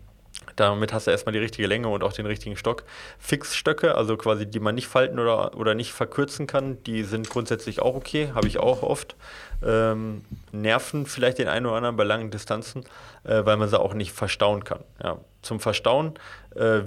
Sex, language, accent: male, German, German